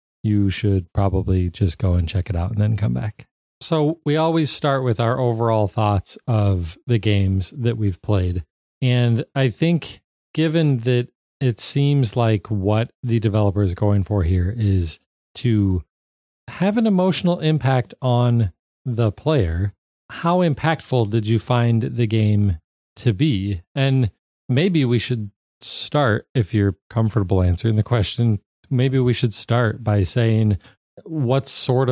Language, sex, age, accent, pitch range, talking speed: English, male, 40-59, American, 100-130 Hz, 150 wpm